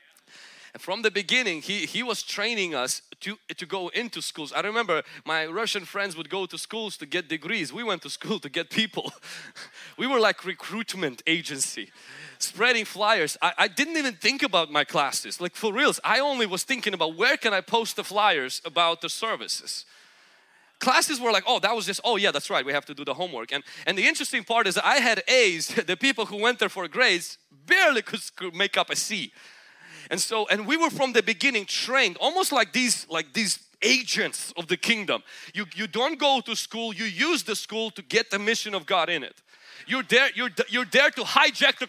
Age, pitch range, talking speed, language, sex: 30-49, 185-260 Hz, 210 wpm, English, male